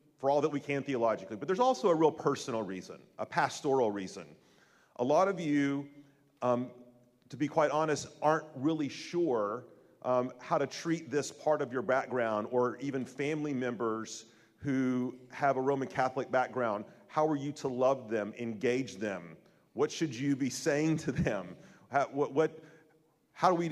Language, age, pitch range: English, 40-59, 120-145 Hz